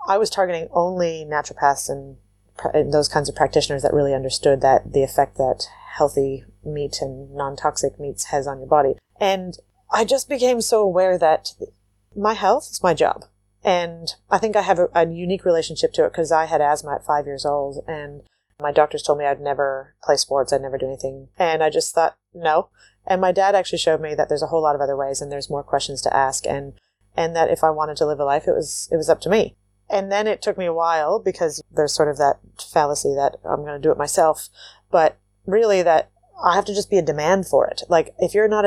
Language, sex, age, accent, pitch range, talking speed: English, female, 30-49, American, 145-190 Hz, 235 wpm